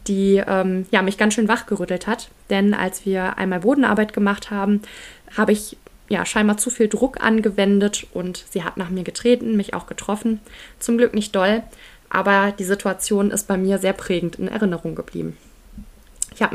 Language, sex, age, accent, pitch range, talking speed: English, female, 20-39, German, 195-225 Hz, 170 wpm